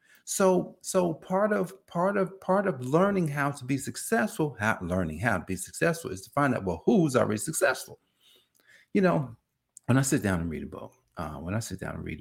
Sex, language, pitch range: male, English, 95-155 Hz